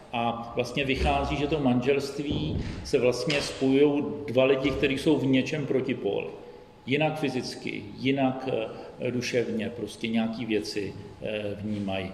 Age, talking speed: 40-59, 120 wpm